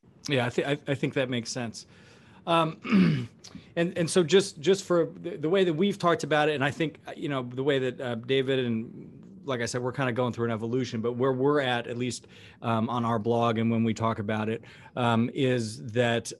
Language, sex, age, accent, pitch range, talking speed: English, male, 30-49, American, 110-130 Hz, 225 wpm